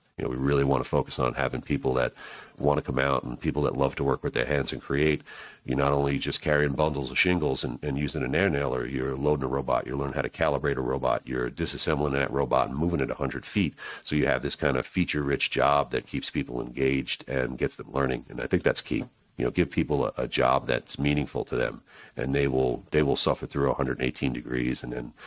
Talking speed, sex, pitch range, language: 245 wpm, male, 70-80 Hz, English